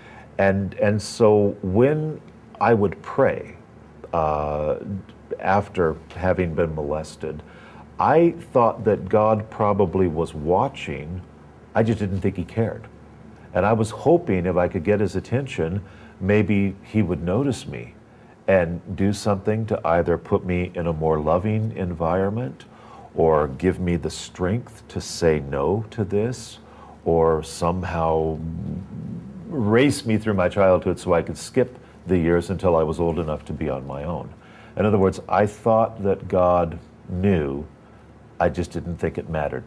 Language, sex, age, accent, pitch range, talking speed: English, male, 50-69, American, 80-105 Hz, 150 wpm